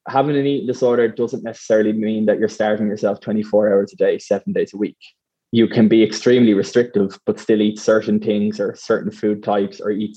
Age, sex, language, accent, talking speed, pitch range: 20-39, male, English, Irish, 205 wpm, 105-120 Hz